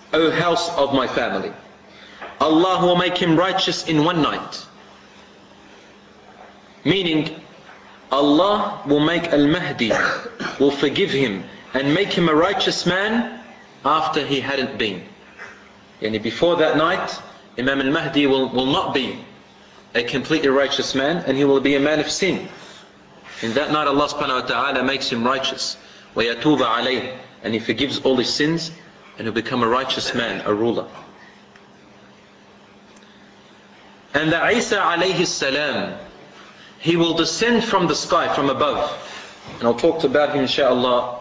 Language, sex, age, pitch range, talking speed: English, male, 30-49, 140-200 Hz, 135 wpm